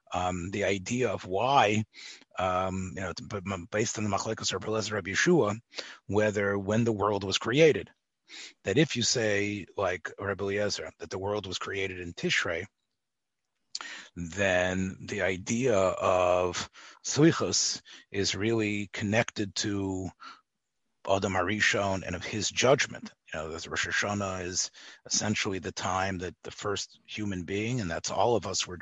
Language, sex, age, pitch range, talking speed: English, male, 40-59, 95-110 Hz, 140 wpm